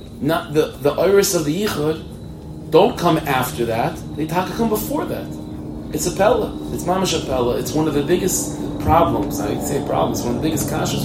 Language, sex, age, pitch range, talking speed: English, male, 30-49, 90-125 Hz, 200 wpm